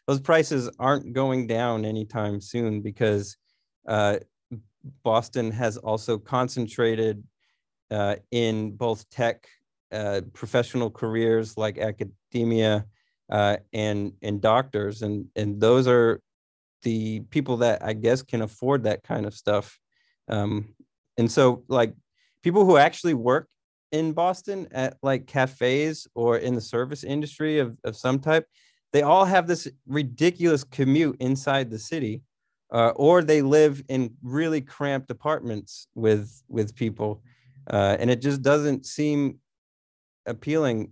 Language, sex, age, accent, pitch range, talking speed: English, male, 30-49, American, 110-135 Hz, 130 wpm